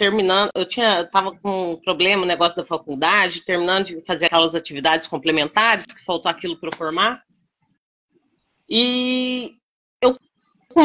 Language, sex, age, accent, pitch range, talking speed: Portuguese, female, 30-49, Brazilian, 195-300 Hz, 150 wpm